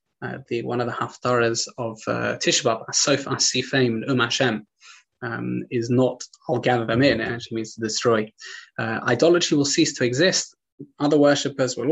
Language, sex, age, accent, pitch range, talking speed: English, male, 20-39, British, 120-145 Hz, 170 wpm